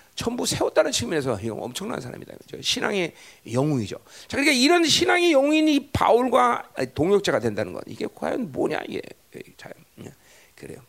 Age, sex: 40-59, male